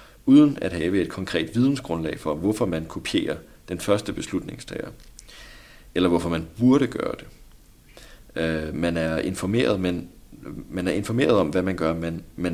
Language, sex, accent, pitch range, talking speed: Danish, male, native, 80-100 Hz, 155 wpm